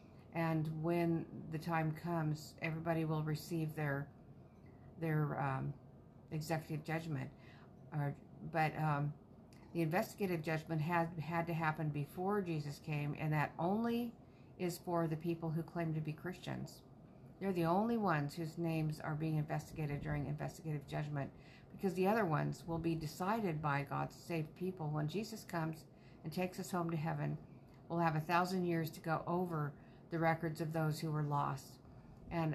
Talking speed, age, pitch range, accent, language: 160 wpm, 50-69, 150-170 Hz, American, English